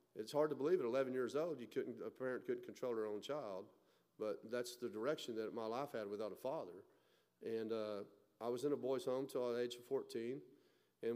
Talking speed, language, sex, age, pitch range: 230 wpm, English, male, 40-59, 115-140 Hz